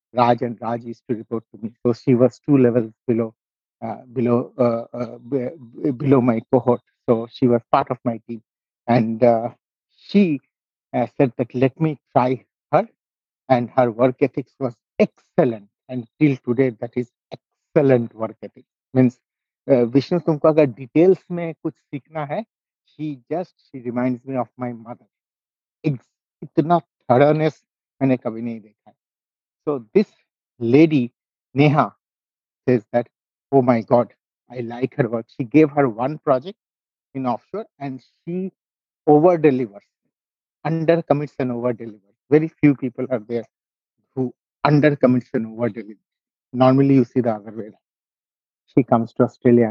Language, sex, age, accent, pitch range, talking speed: English, male, 60-79, Indian, 120-145 Hz, 145 wpm